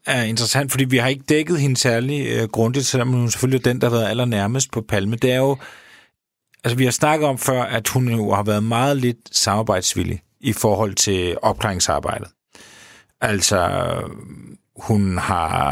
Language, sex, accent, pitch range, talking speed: Danish, male, native, 100-125 Hz, 170 wpm